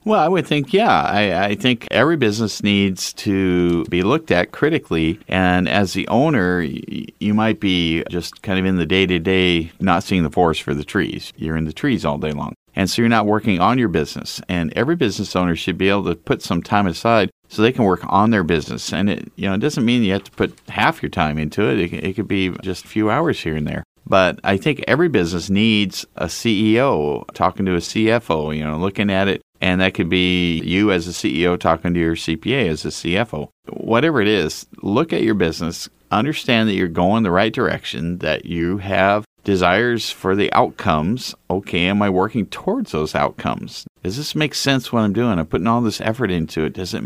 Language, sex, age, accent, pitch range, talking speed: English, male, 50-69, American, 85-105 Hz, 220 wpm